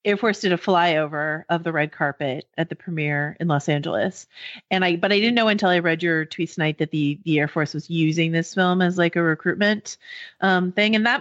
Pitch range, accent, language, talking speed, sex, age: 170-215 Hz, American, English, 235 wpm, female, 30-49